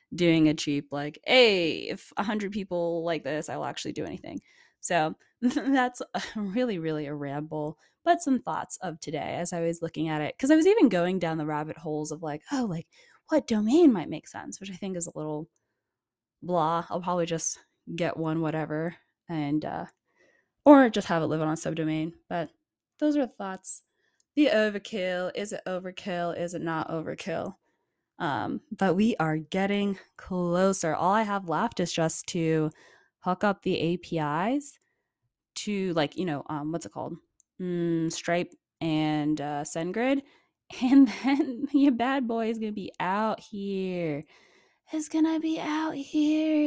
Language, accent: English, American